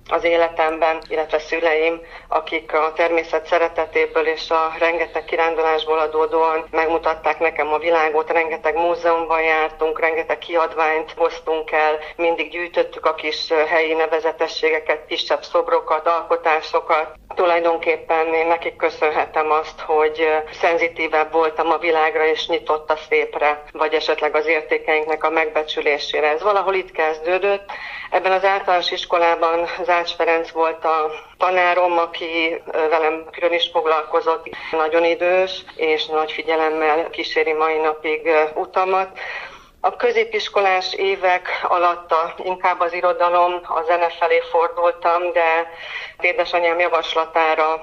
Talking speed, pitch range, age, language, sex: 115 wpm, 160-170 Hz, 40-59, Hungarian, female